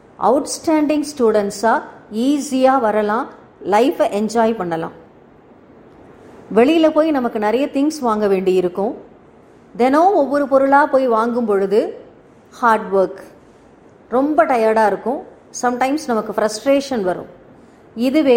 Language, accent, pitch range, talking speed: Tamil, native, 215-285 Hz, 100 wpm